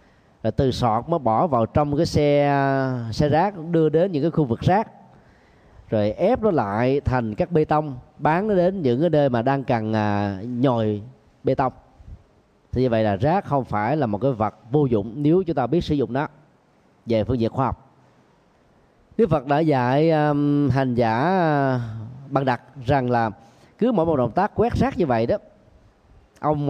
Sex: male